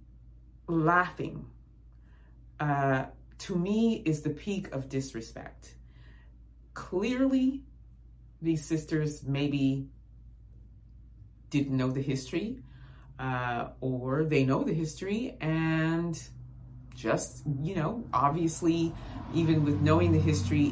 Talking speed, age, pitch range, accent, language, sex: 95 wpm, 30-49, 120-155 Hz, American, English, female